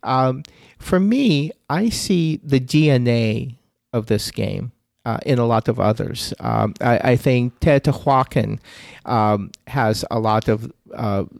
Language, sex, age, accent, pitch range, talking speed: English, male, 40-59, American, 110-135 Hz, 145 wpm